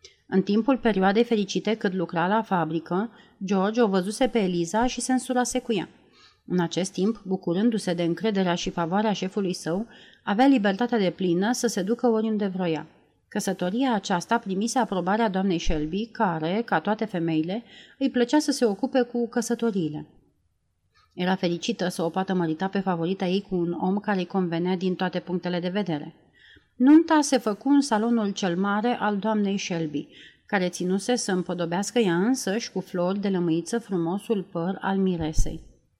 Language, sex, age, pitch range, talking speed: Romanian, female, 30-49, 180-230 Hz, 165 wpm